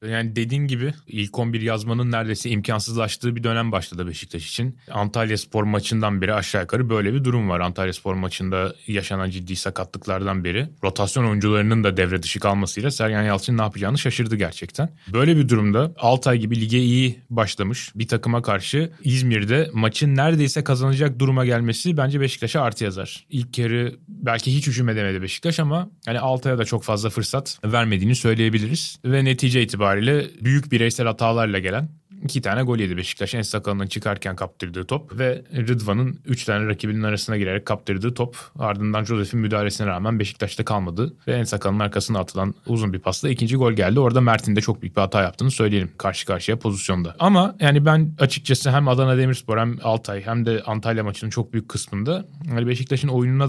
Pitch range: 105-130 Hz